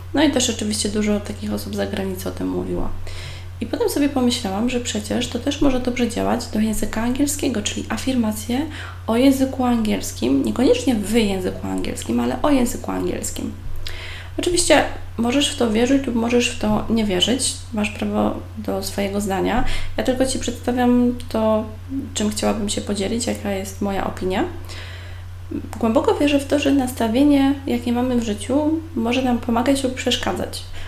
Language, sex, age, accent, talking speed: Polish, female, 20-39, native, 160 wpm